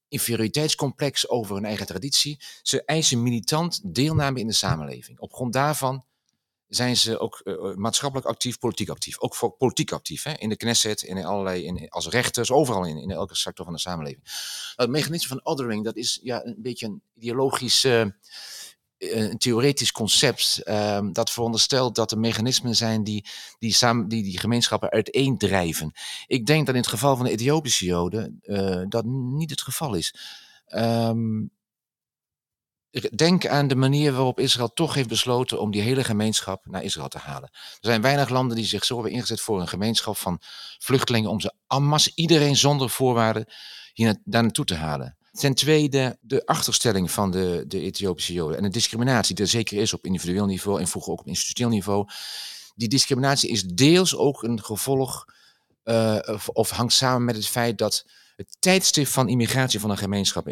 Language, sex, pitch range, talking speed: Dutch, male, 100-130 Hz, 180 wpm